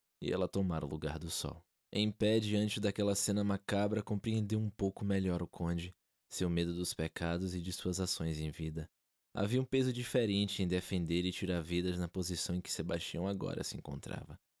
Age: 20-39